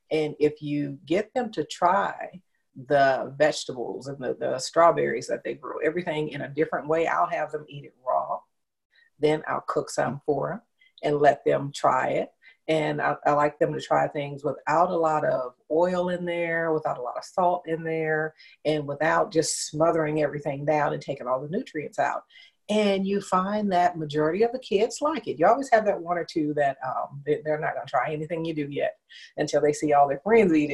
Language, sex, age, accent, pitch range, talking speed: English, female, 40-59, American, 145-175 Hz, 210 wpm